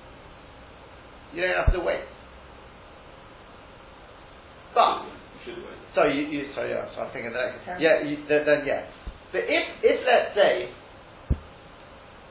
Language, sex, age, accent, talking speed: English, male, 40-59, British, 125 wpm